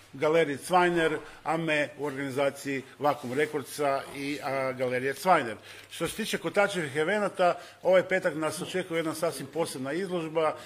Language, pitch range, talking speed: Croatian, 145-170 Hz, 135 wpm